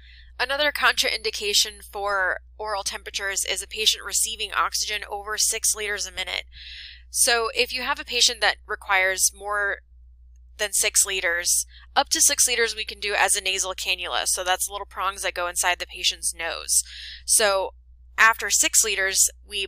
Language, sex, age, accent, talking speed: English, female, 10-29, American, 160 wpm